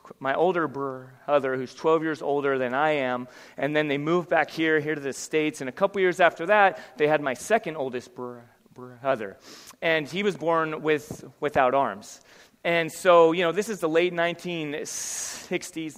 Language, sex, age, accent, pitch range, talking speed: English, male, 30-49, American, 135-160 Hz, 185 wpm